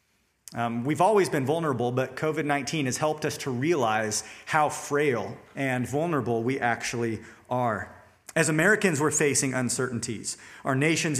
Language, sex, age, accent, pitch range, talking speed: English, male, 40-59, American, 130-170 Hz, 140 wpm